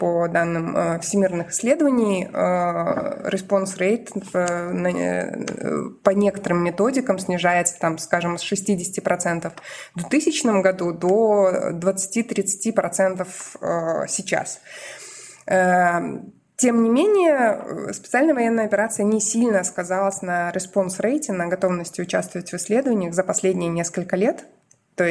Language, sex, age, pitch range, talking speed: Russian, female, 20-39, 180-230 Hz, 100 wpm